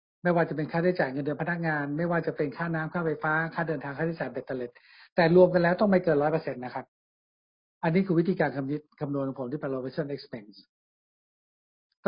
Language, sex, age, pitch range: Thai, male, 60-79, 145-170 Hz